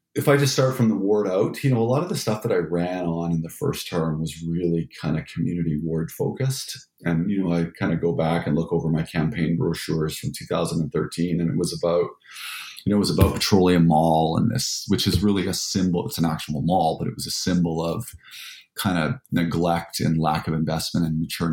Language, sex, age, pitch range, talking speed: English, male, 40-59, 80-95 Hz, 230 wpm